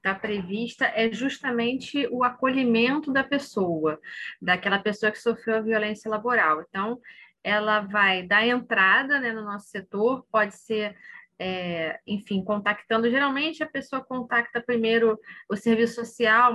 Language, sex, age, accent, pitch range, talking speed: Portuguese, female, 20-39, Brazilian, 205-245 Hz, 130 wpm